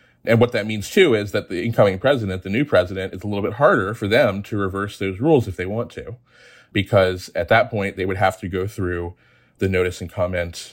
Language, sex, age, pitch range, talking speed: English, male, 30-49, 95-110 Hz, 235 wpm